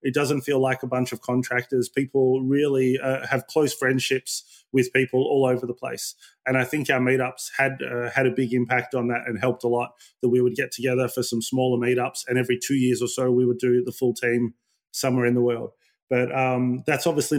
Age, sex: 20-39, male